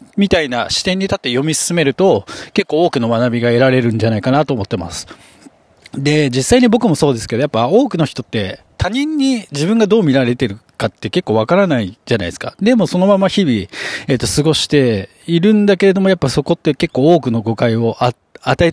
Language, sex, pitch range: Japanese, male, 120-195 Hz